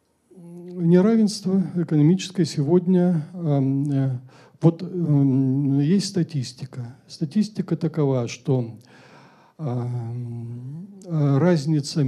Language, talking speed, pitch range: Russian, 50 wpm, 125-165 Hz